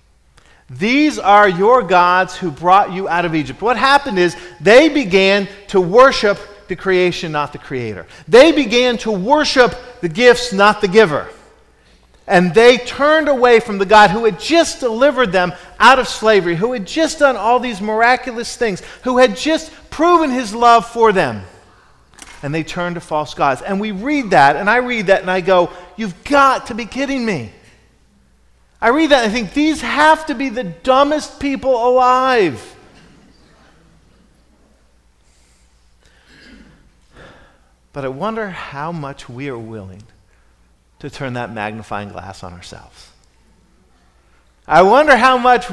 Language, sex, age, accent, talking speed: English, male, 40-59, American, 155 wpm